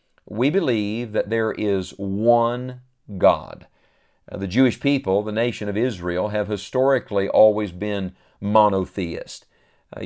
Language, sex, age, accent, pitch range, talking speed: English, male, 50-69, American, 105-130 Hz, 125 wpm